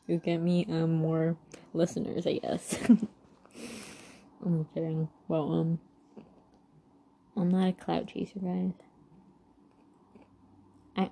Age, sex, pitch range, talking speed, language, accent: 20-39, female, 165-195 Hz, 105 wpm, English, American